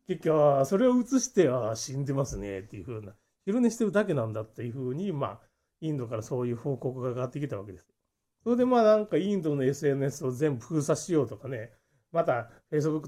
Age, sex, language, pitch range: 30-49, male, Japanese, 125-215 Hz